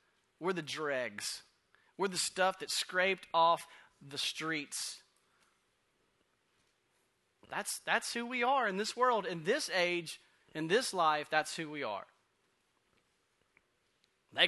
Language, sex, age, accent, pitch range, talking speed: English, male, 30-49, American, 175-250 Hz, 125 wpm